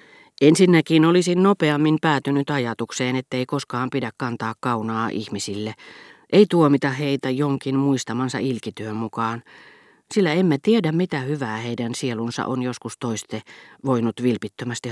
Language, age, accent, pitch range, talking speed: Finnish, 40-59, native, 115-150 Hz, 125 wpm